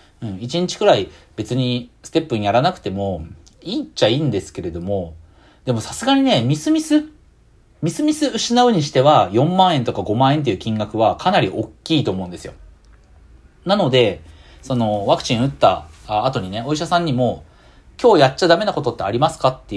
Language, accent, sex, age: Japanese, native, male, 40-59